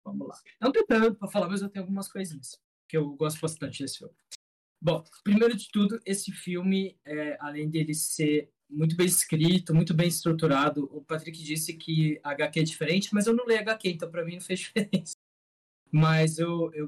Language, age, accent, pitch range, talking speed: Portuguese, 20-39, Brazilian, 145-175 Hz, 205 wpm